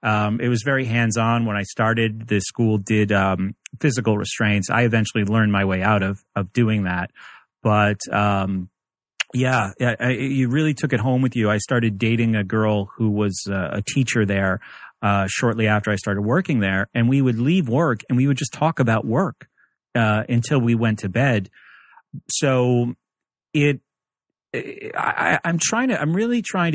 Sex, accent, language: male, American, English